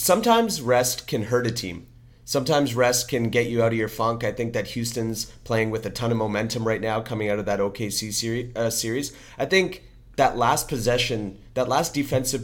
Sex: male